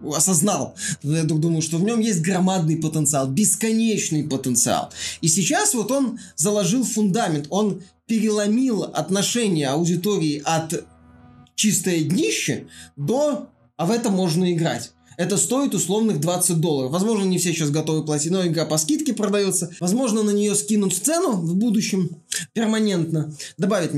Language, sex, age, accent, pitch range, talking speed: Russian, male, 20-39, native, 160-200 Hz, 140 wpm